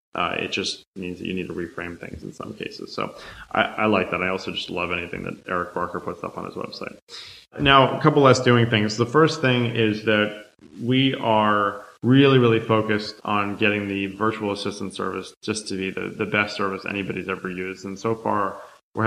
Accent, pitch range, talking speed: American, 100-115 Hz, 210 wpm